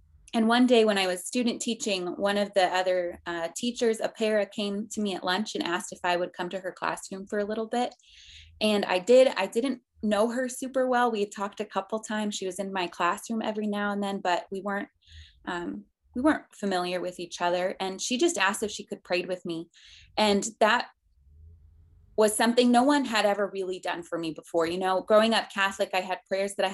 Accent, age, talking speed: American, 20-39, 225 wpm